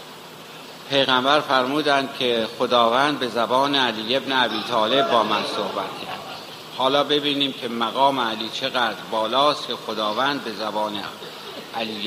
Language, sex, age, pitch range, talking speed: Persian, male, 60-79, 110-135 Hz, 125 wpm